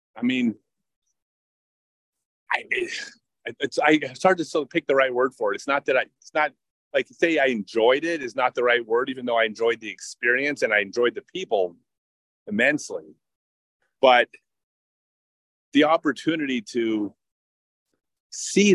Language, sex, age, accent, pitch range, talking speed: English, male, 30-49, American, 105-145 Hz, 155 wpm